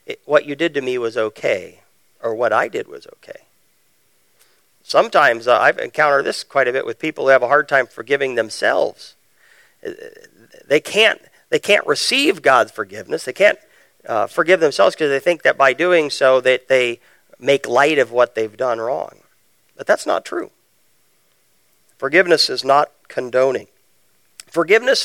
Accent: American